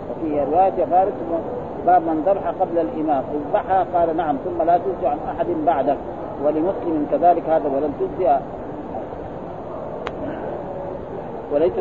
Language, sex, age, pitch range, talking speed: Arabic, male, 40-59, 150-175 Hz, 120 wpm